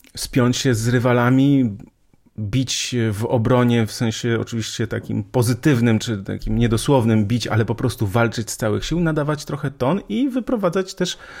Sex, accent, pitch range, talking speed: male, native, 105-125 Hz, 155 wpm